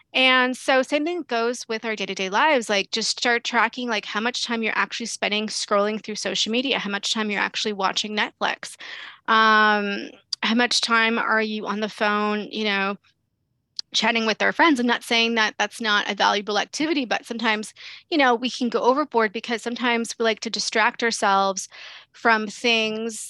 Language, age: English, 20-39